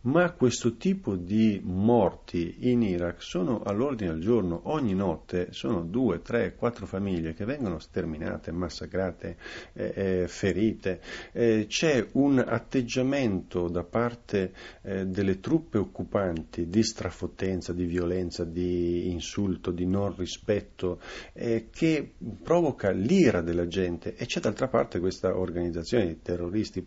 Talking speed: 130 wpm